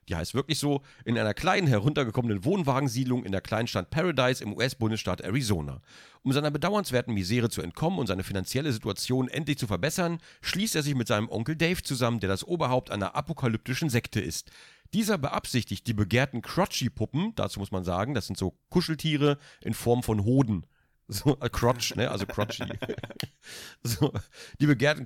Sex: male